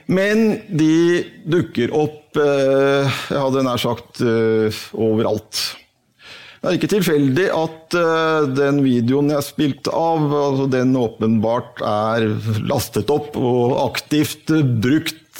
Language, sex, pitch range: English, male, 115-155 Hz